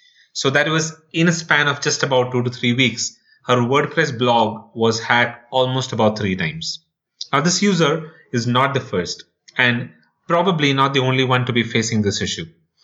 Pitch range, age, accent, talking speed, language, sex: 115-150 Hz, 30-49, Indian, 190 wpm, English, male